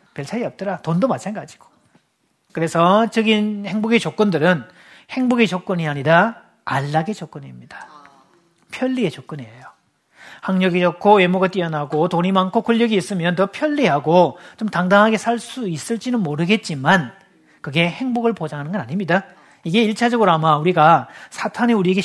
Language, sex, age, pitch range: Korean, male, 40-59, 165-220 Hz